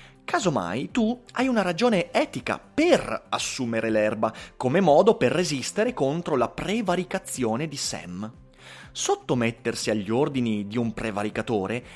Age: 30-49